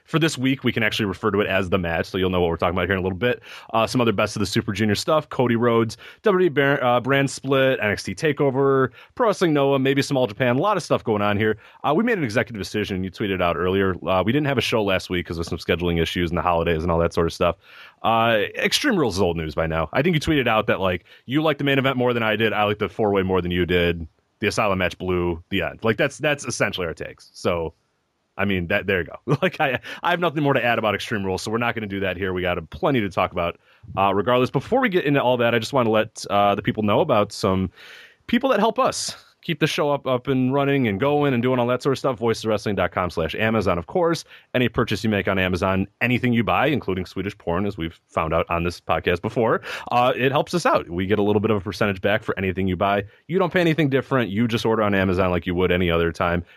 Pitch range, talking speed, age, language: 95-135 Hz, 280 wpm, 30-49, English